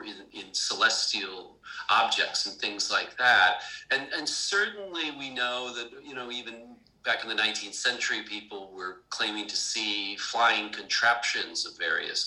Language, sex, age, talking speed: English, male, 40-59, 150 wpm